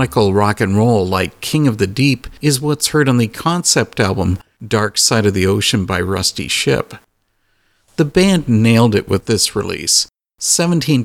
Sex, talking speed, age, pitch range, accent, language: male, 170 wpm, 50-69, 100-135 Hz, American, English